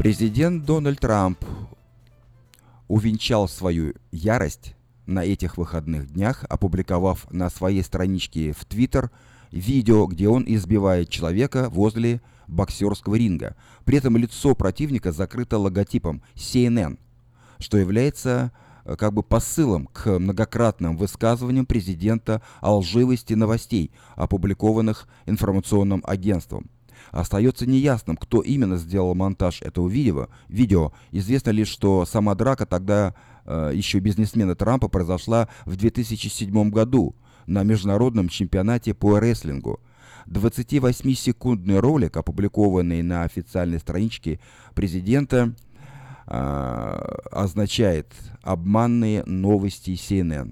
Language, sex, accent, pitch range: Russian, male, native, 95-120 Hz